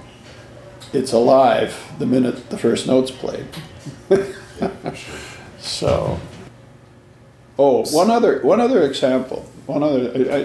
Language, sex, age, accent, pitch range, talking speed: English, male, 50-69, American, 120-135 Hz, 105 wpm